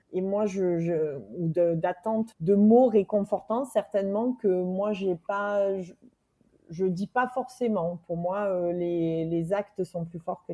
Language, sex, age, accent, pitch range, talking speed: French, female, 30-49, French, 170-210 Hz, 175 wpm